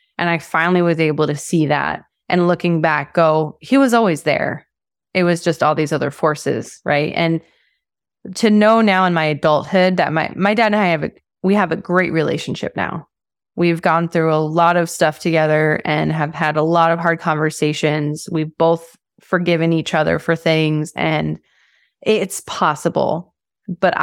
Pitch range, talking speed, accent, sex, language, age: 160-190 Hz, 180 wpm, American, female, English, 20-39